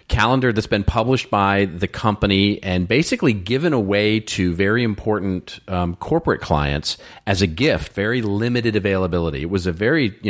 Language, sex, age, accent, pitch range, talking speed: English, male, 40-59, American, 85-110 Hz, 165 wpm